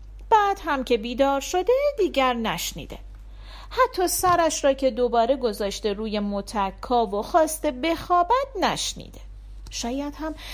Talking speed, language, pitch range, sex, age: 120 wpm, Persian, 195-295 Hz, female, 40-59